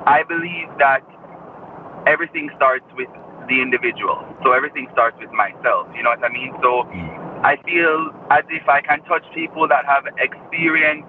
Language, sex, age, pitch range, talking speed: English, male, 30-49, 125-160 Hz, 160 wpm